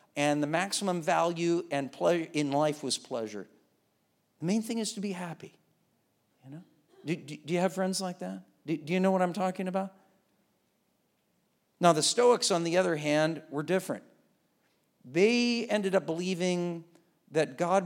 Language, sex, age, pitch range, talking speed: English, male, 50-69, 140-180 Hz, 170 wpm